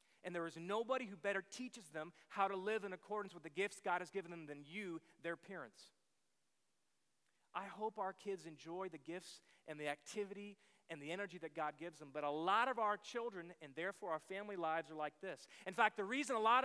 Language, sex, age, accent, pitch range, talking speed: English, male, 30-49, American, 165-215 Hz, 220 wpm